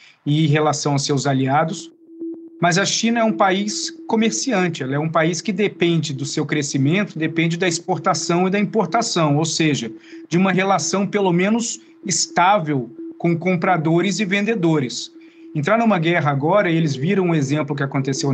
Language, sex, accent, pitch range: Portuguese, male, Brazilian, 150-195 Hz